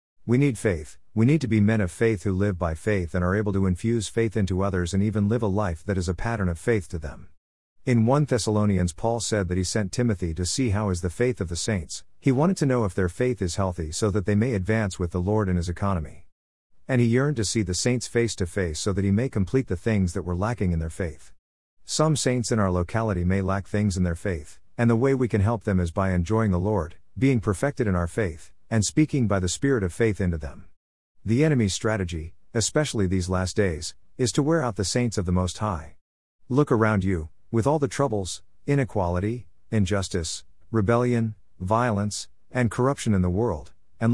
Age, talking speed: 50-69, 225 wpm